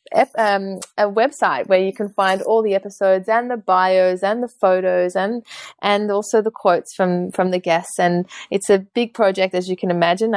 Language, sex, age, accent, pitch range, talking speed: English, female, 20-39, Australian, 180-205 Hz, 195 wpm